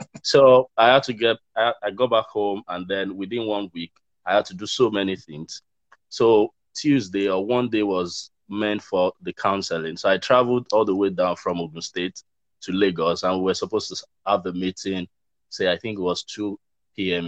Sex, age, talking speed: male, 20-39, 205 wpm